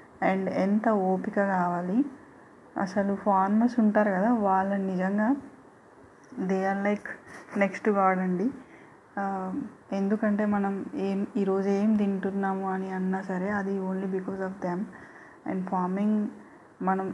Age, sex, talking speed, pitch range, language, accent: 20-39, female, 110 wpm, 185-205 Hz, Telugu, native